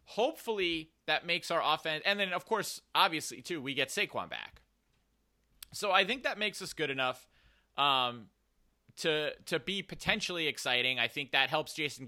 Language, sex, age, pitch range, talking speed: English, male, 30-49, 125-165 Hz, 170 wpm